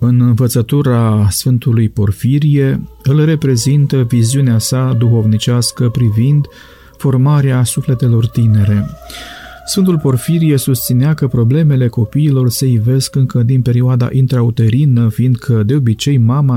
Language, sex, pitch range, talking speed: Romanian, male, 120-145 Hz, 105 wpm